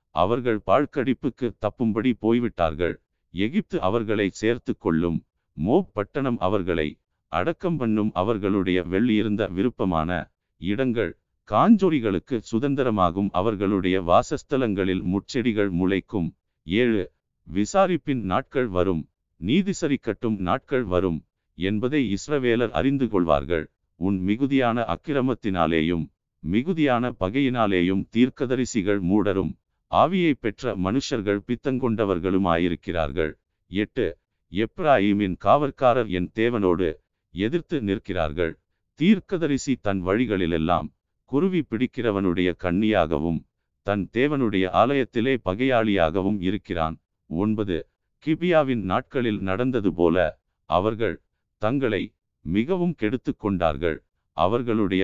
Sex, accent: male, native